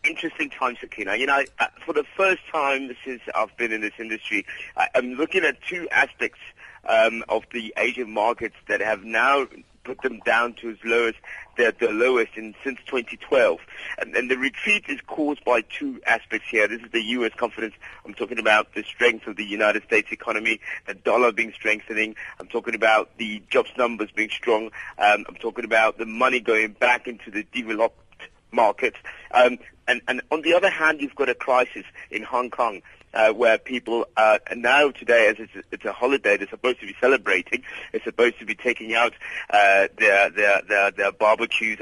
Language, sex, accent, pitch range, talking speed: English, male, British, 110-130 Hz, 190 wpm